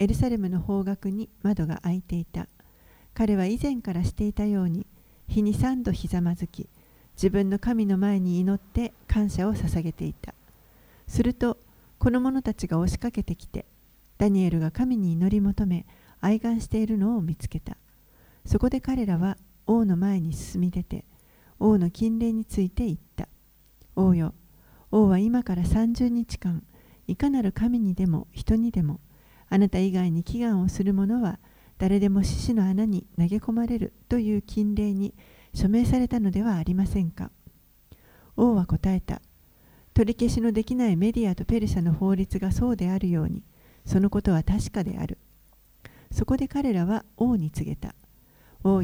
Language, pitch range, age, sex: Japanese, 180-225 Hz, 50-69, female